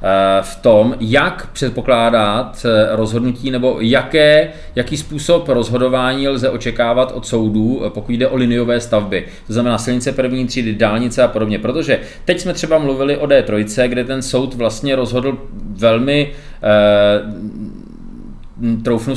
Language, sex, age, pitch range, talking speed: Czech, male, 30-49, 115-130 Hz, 130 wpm